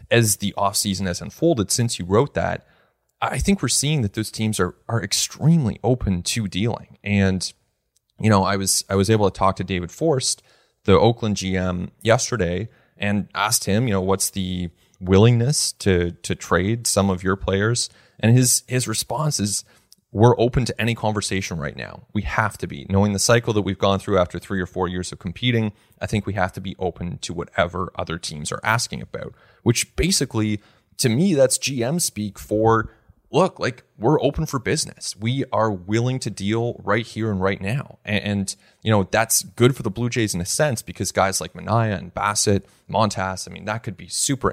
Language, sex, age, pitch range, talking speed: English, male, 30-49, 95-115 Hz, 200 wpm